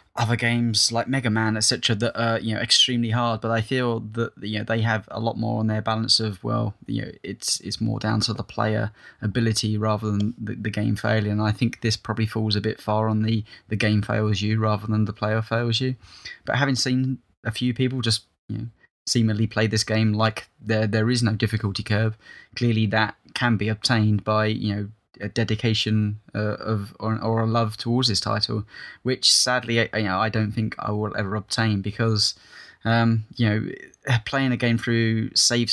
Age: 10-29